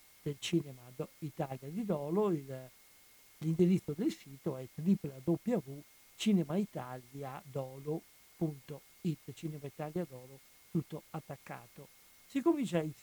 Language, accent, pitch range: Italian, native, 145-185 Hz